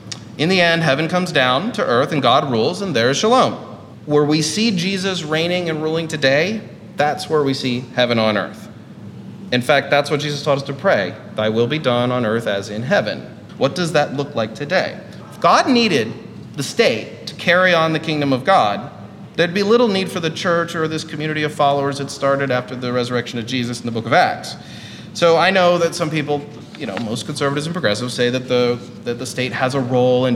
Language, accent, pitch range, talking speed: English, American, 120-155 Hz, 220 wpm